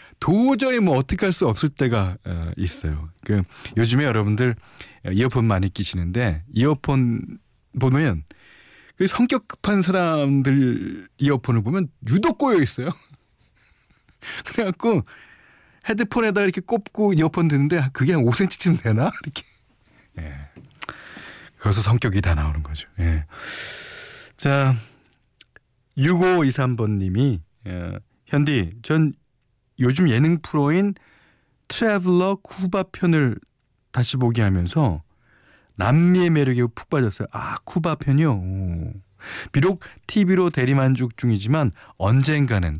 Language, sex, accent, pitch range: Korean, male, native, 100-170 Hz